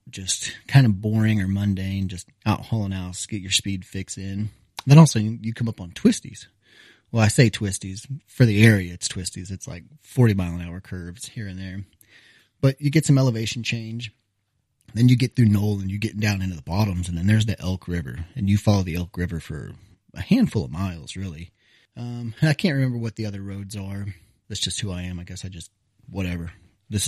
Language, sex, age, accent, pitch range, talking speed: English, male, 30-49, American, 95-115 Hz, 215 wpm